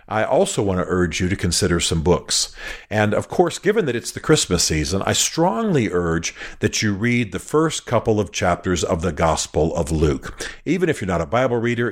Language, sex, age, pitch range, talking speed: English, male, 50-69, 90-115 Hz, 210 wpm